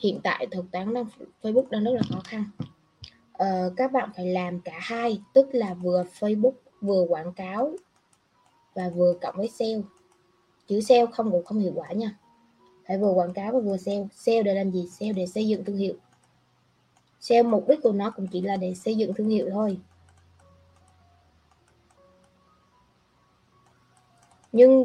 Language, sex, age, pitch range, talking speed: Vietnamese, female, 20-39, 185-245 Hz, 165 wpm